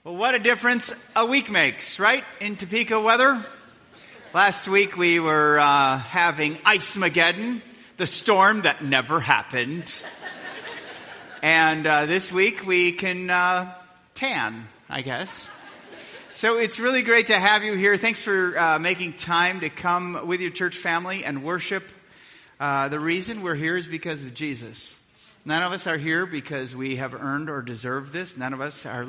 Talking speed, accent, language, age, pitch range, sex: 165 wpm, American, English, 30-49, 140-195 Hz, male